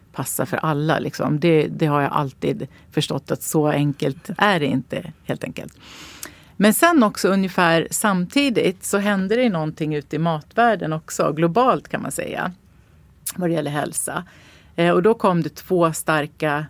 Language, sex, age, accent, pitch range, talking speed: English, female, 40-59, Swedish, 145-175 Hz, 160 wpm